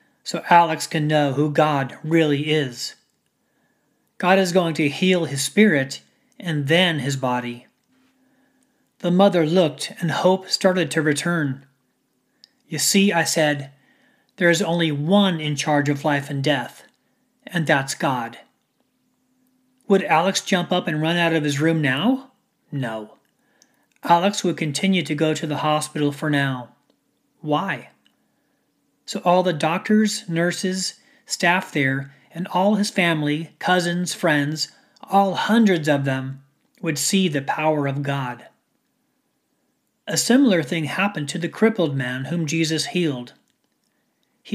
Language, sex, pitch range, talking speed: English, male, 150-200 Hz, 135 wpm